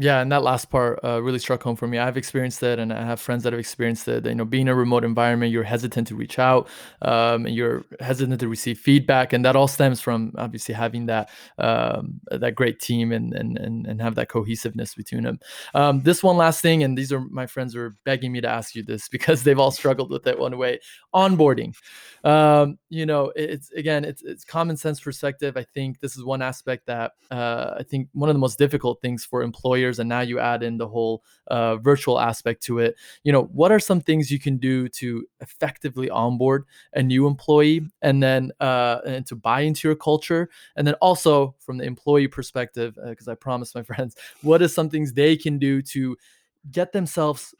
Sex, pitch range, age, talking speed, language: male, 120-145 Hz, 20-39, 220 wpm, English